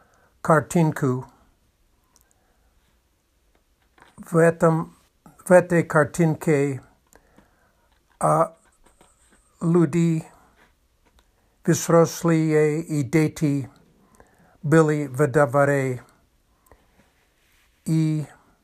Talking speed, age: 50 wpm, 60-79